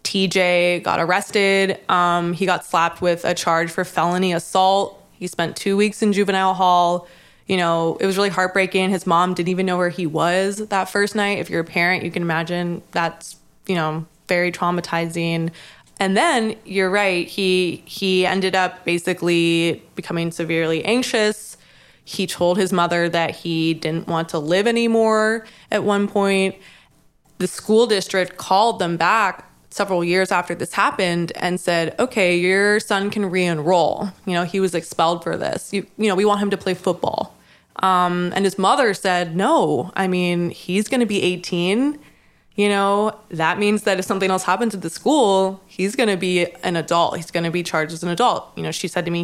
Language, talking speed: English, 190 wpm